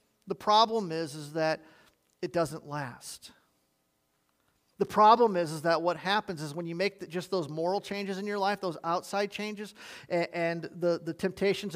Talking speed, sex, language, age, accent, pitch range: 180 wpm, male, English, 40-59, American, 160-195 Hz